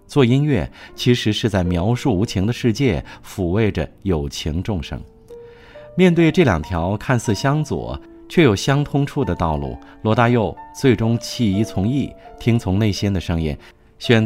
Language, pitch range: Chinese, 90-125 Hz